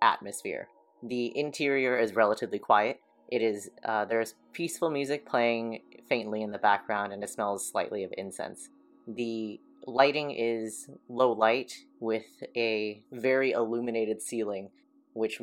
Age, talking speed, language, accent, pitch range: 30-49, 130 wpm, English, American, 110-135 Hz